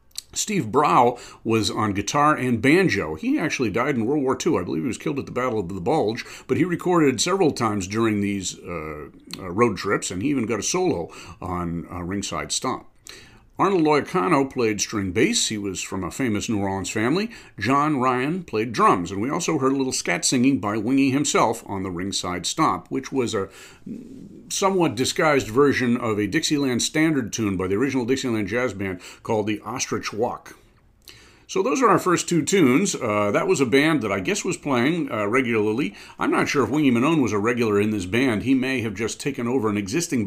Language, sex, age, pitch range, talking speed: English, male, 50-69, 100-135 Hz, 205 wpm